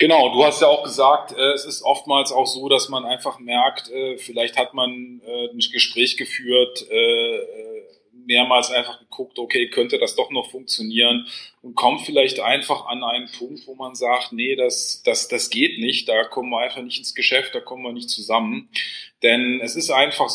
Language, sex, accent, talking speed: German, male, German, 185 wpm